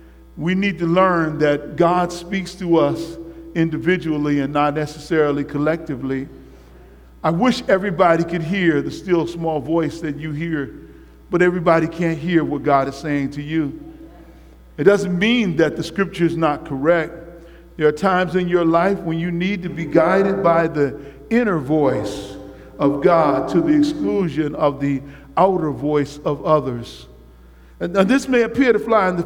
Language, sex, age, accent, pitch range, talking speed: English, male, 50-69, American, 160-220 Hz, 165 wpm